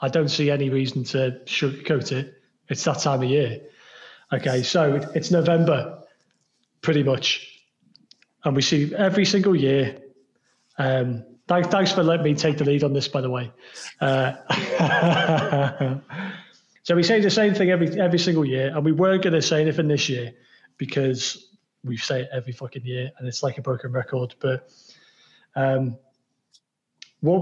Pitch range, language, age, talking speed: 130-155 Hz, English, 30-49, 165 wpm